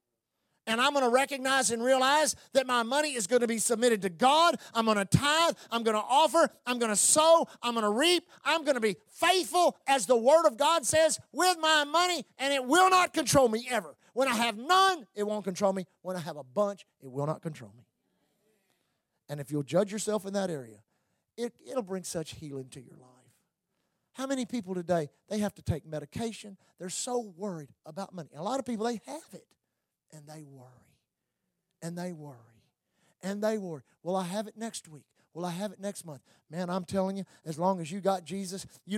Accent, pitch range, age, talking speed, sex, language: American, 175-255 Hz, 40-59, 215 wpm, male, English